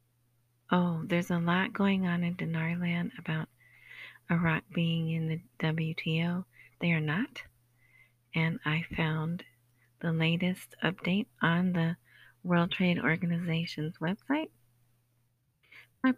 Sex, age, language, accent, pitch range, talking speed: female, 40-59, English, American, 155-180 Hz, 110 wpm